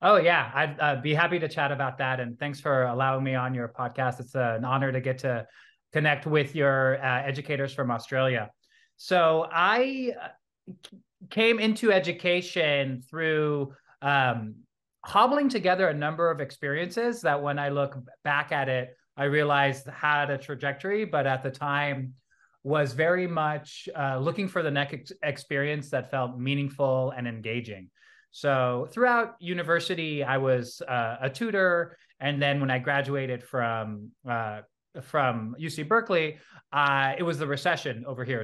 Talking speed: 155 wpm